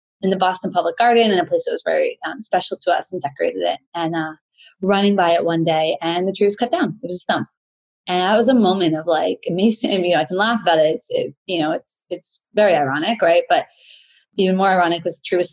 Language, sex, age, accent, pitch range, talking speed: English, female, 20-39, American, 170-225 Hz, 265 wpm